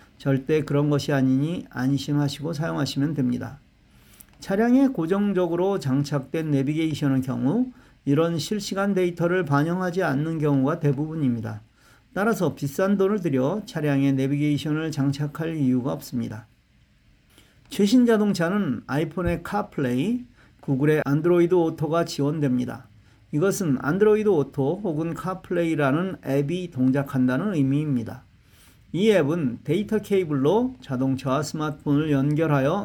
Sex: male